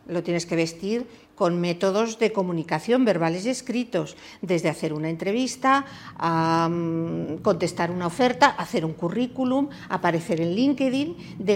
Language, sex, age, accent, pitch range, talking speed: Spanish, female, 50-69, Spanish, 170-245 Hz, 140 wpm